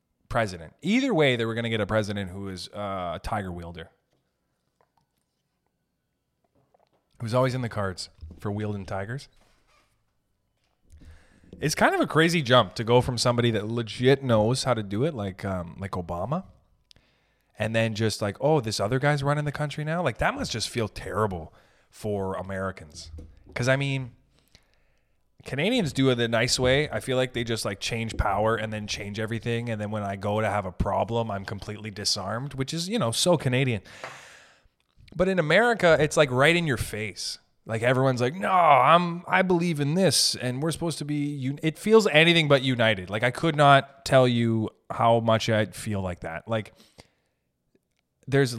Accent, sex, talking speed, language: American, male, 180 wpm, English